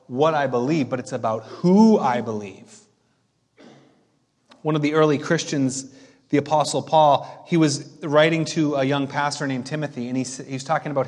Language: English